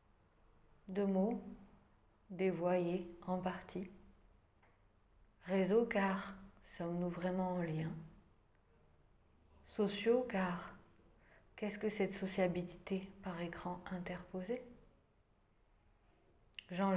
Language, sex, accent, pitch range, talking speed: French, female, French, 115-195 Hz, 75 wpm